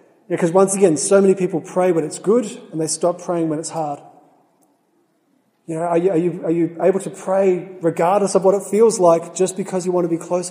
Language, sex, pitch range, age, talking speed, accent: English, male, 160-190 Hz, 30-49, 240 wpm, Australian